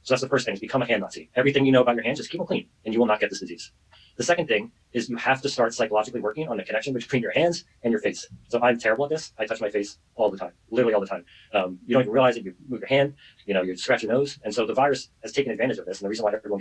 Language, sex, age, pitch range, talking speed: English, male, 30-49, 105-140 Hz, 335 wpm